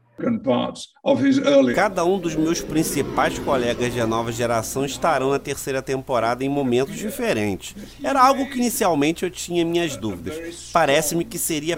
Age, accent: 40-59, Brazilian